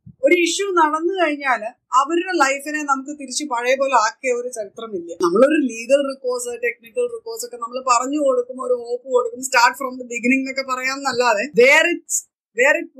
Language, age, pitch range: Malayalam, 20-39, 235-300 Hz